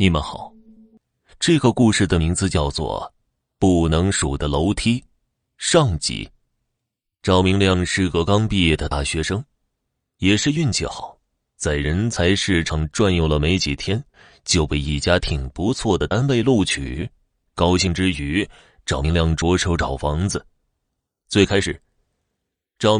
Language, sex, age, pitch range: Chinese, male, 30-49, 80-105 Hz